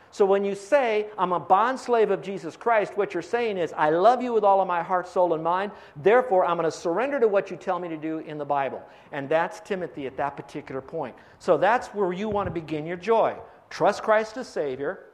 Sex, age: male, 50-69